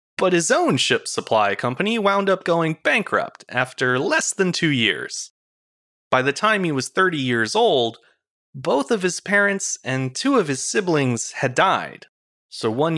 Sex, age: male, 30-49